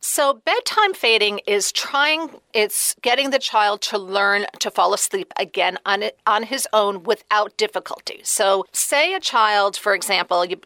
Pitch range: 190-255 Hz